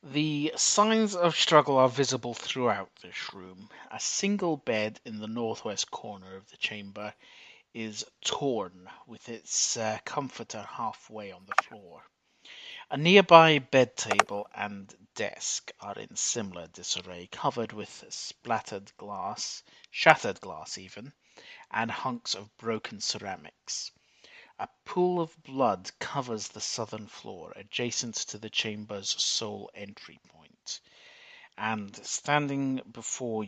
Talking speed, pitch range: 125 wpm, 105-140 Hz